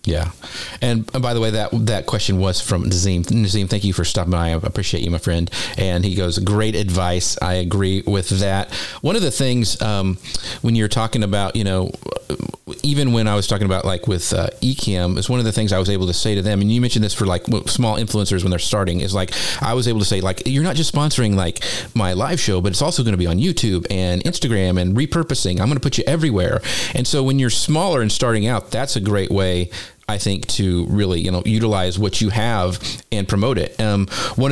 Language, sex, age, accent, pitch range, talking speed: English, male, 40-59, American, 95-115 Hz, 235 wpm